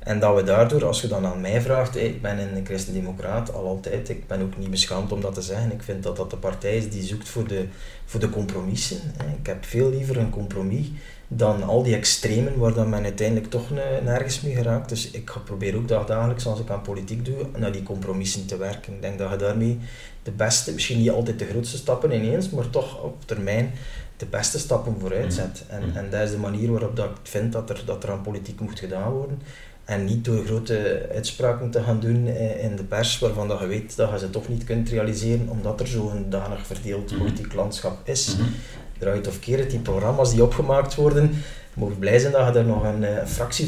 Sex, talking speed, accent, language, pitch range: male, 220 wpm, Dutch, Dutch, 100-120 Hz